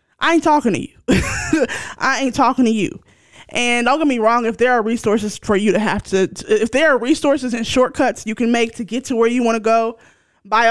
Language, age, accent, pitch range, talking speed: English, 20-39, American, 205-250 Hz, 235 wpm